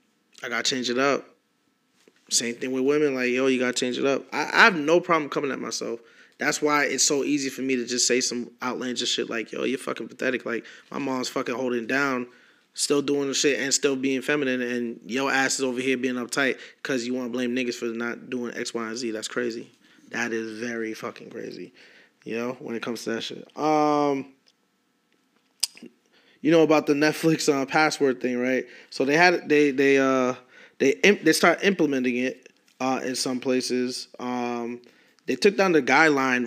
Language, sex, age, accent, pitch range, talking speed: English, male, 20-39, American, 125-145 Hz, 205 wpm